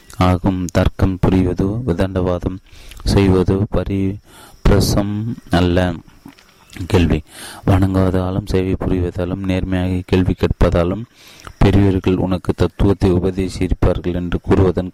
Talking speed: 45 wpm